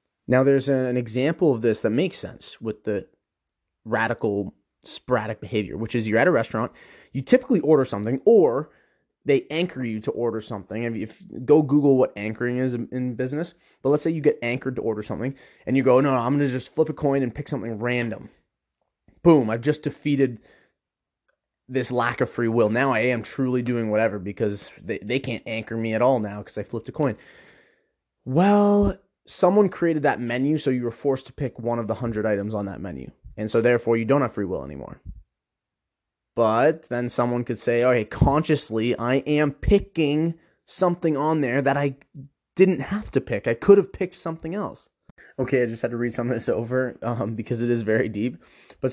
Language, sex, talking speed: English, male, 200 wpm